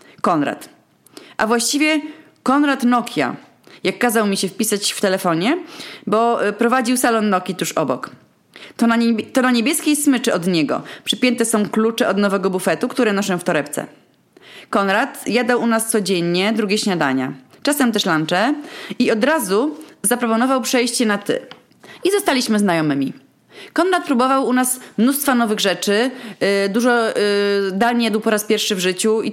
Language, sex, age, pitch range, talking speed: Polish, female, 30-49, 205-255 Hz, 150 wpm